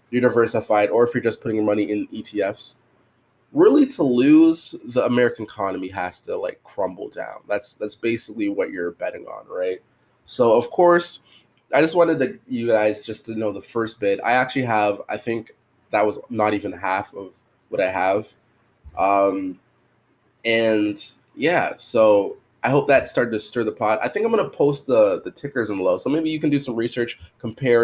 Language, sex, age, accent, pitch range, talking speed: English, male, 20-39, American, 105-155 Hz, 190 wpm